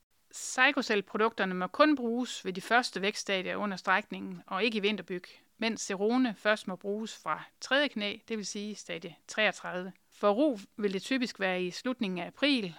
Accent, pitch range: native, 190-235 Hz